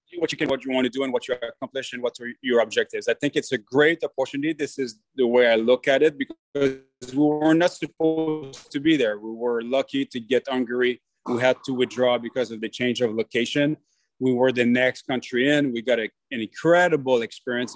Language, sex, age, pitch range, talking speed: English, male, 30-49, 120-150 Hz, 225 wpm